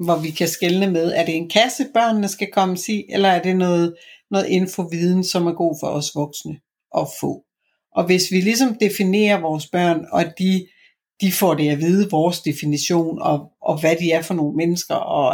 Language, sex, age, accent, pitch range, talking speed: Danish, female, 60-79, native, 170-205 Hz, 210 wpm